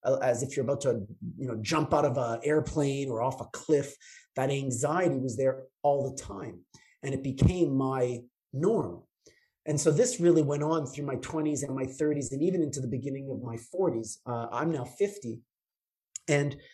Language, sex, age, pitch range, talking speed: English, male, 30-49, 130-155 Hz, 185 wpm